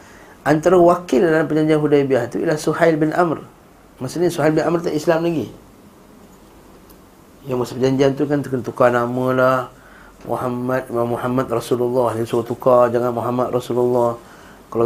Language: Malay